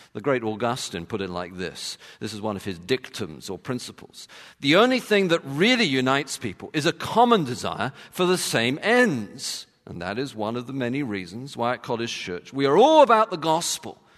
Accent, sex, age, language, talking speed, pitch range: British, male, 50-69, English, 205 wpm, 120-180 Hz